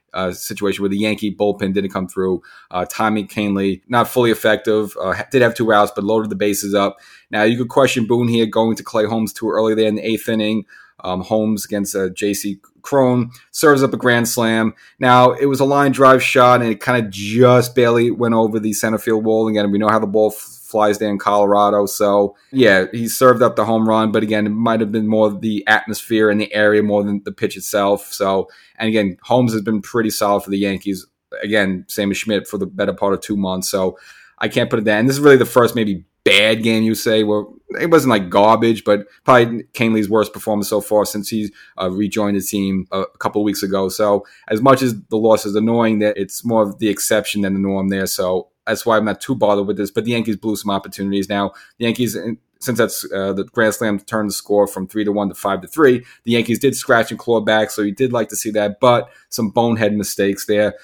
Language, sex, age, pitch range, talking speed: English, male, 30-49, 100-115 Hz, 235 wpm